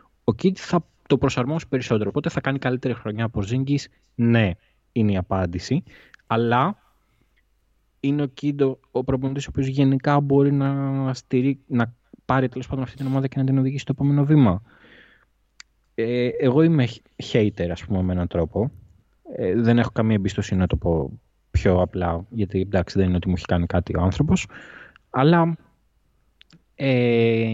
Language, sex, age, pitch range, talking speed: Greek, male, 20-39, 95-135 Hz, 160 wpm